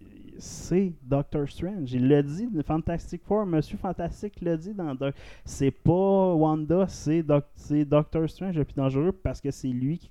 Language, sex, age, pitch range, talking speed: French, male, 30-49, 120-145 Hz, 185 wpm